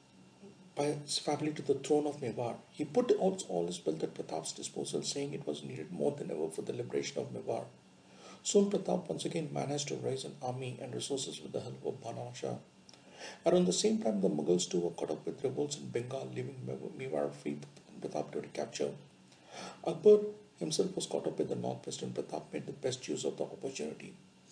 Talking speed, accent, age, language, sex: 205 wpm, Indian, 60-79, English, male